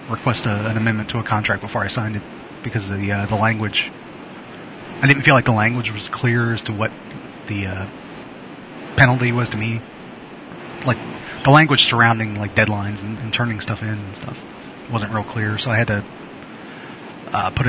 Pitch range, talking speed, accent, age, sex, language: 105-120 Hz, 190 wpm, American, 30-49, male, English